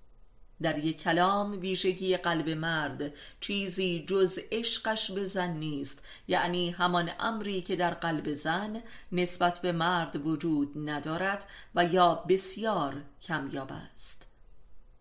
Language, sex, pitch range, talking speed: Persian, female, 155-185 Hz, 115 wpm